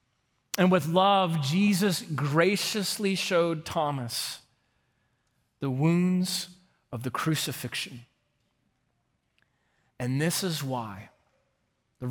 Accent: American